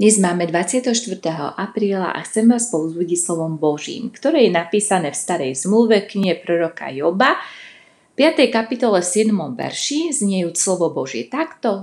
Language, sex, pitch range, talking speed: Slovak, female, 160-230 Hz, 140 wpm